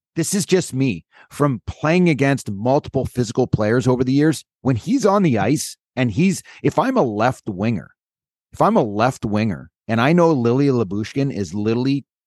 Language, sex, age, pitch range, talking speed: English, male, 30-49, 110-150 Hz, 180 wpm